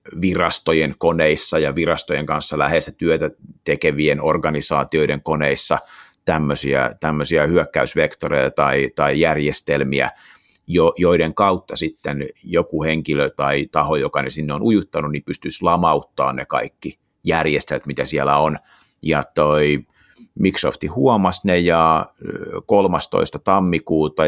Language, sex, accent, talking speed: Finnish, male, native, 110 wpm